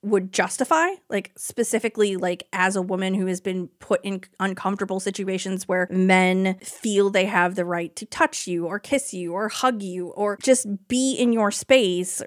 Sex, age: female, 20-39